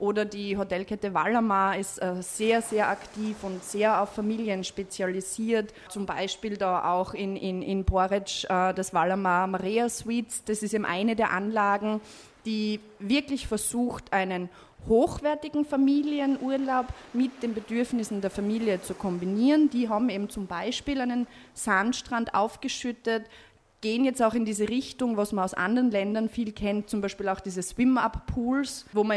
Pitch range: 195-230 Hz